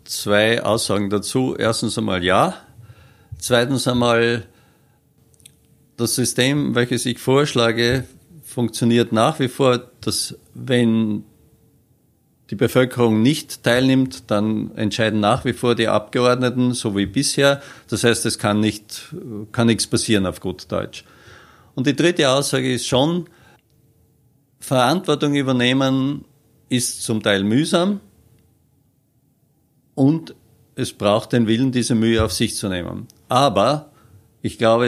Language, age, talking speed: German, 50-69, 120 wpm